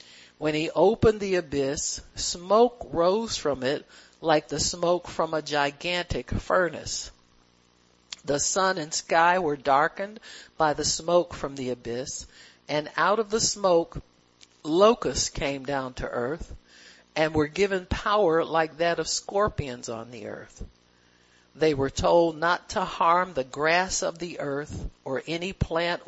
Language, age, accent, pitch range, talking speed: English, 50-69, American, 140-180 Hz, 145 wpm